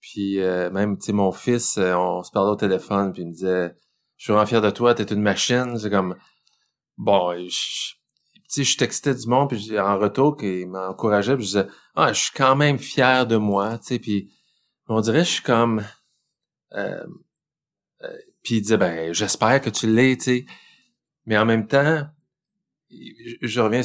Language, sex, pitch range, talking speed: French, male, 105-135 Hz, 195 wpm